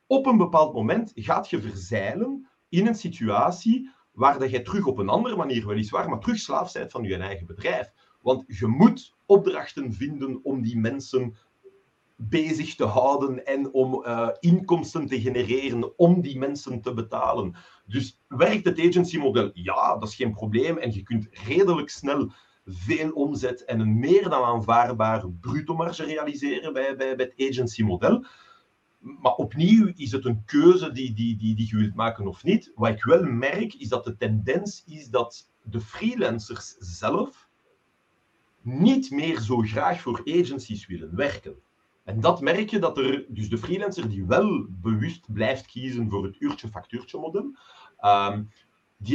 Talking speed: 165 wpm